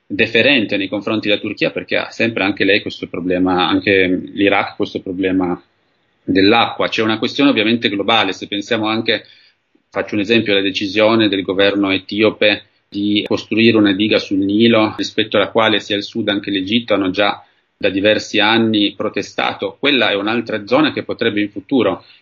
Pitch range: 100-115 Hz